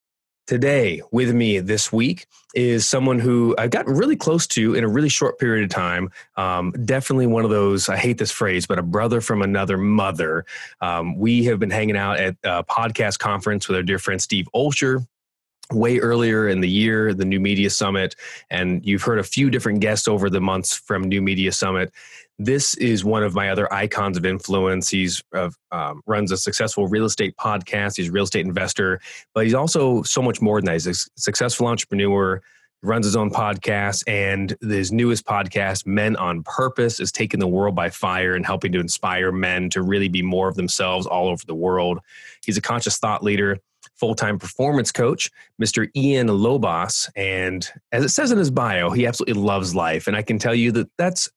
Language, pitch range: English, 95-115 Hz